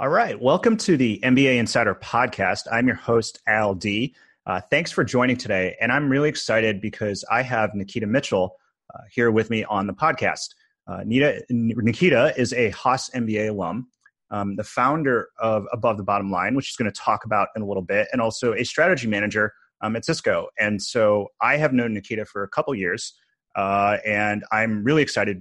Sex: male